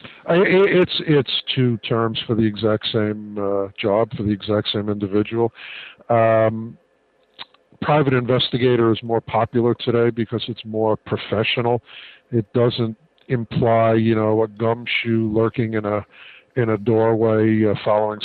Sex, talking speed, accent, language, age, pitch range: male, 140 wpm, American, English, 50-69, 110-125 Hz